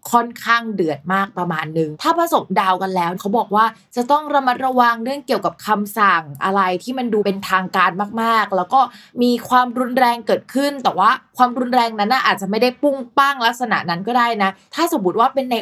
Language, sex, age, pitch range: Thai, female, 20-39, 190-245 Hz